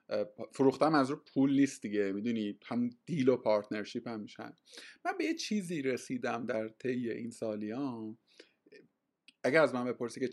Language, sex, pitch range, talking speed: Persian, male, 110-145 Hz, 165 wpm